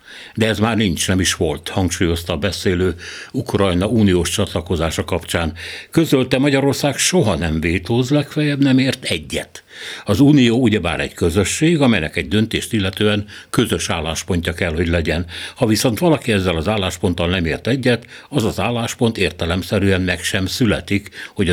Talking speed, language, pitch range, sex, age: 150 wpm, Hungarian, 85-115 Hz, male, 60-79